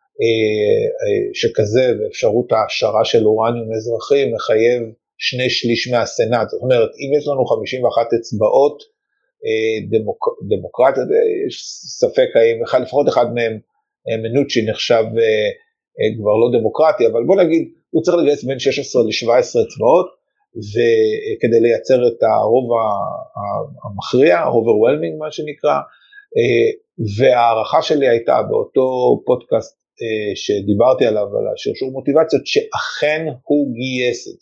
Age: 50-69